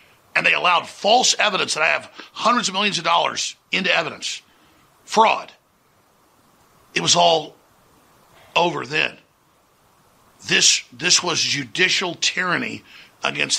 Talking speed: 120 wpm